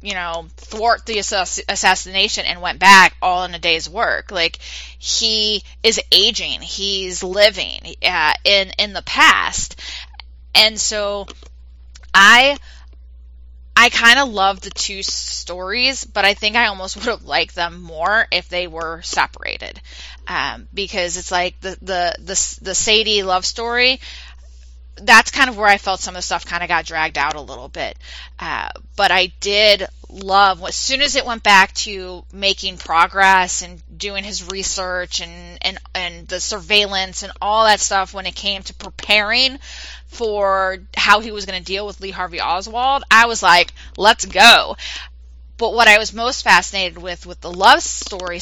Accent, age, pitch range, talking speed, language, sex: American, 20-39, 170-205 Hz, 165 wpm, English, female